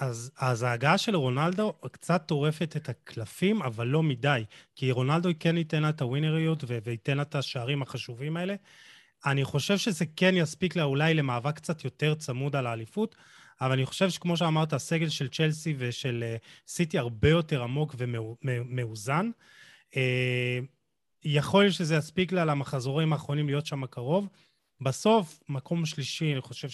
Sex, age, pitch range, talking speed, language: male, 30-49, 130-170 Hz, 155 wpm, Hebrew